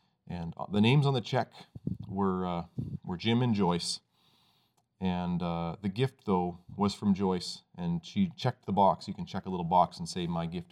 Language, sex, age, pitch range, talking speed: English, male, 30-49, 90-120 Hz, 195 wpm